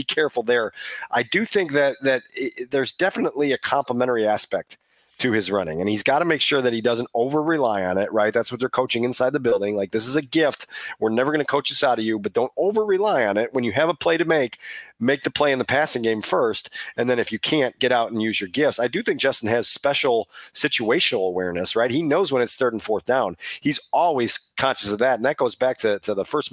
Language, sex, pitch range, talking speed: English, male, 115-160 Hz, 255 wpm